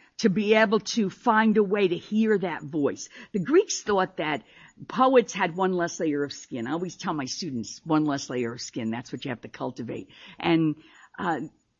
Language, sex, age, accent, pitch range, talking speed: English, female, 50-69, American, 155-215 Hz, 205 wpm